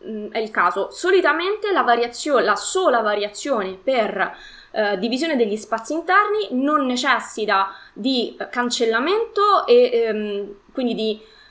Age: 20-39